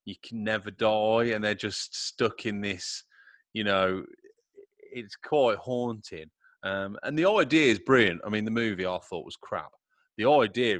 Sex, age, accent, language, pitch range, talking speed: male, 30-49, British, English, 95-115 Hz, 170 wpm